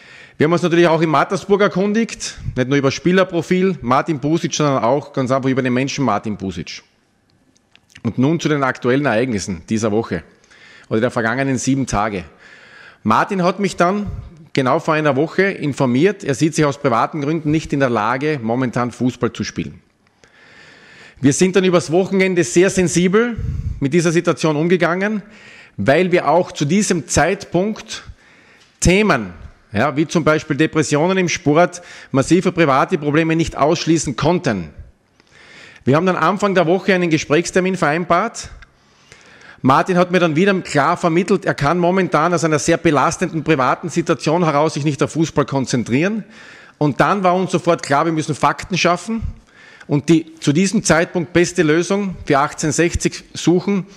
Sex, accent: male, Austrian